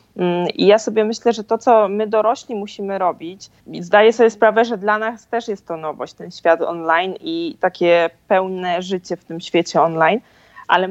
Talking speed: 180 wpm